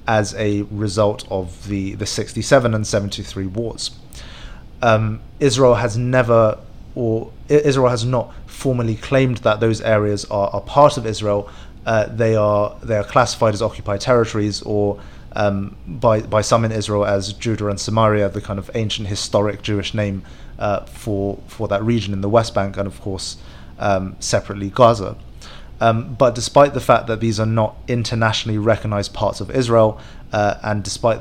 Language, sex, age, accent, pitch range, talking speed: English, male, 30-49, British, 100-115 Hz, 165 wpm